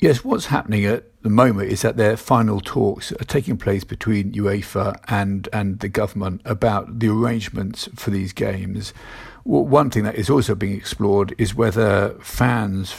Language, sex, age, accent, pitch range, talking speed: English, male, 50-69, British, 100-115 Hz, 165 wpm